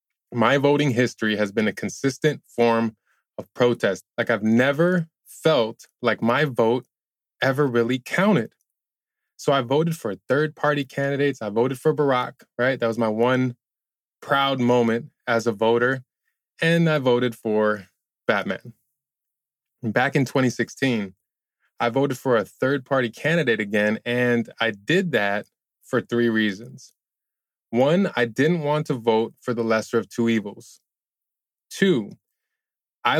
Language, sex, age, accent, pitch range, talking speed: English, male, 20-39, American, 110-140 Hz, 135 wpm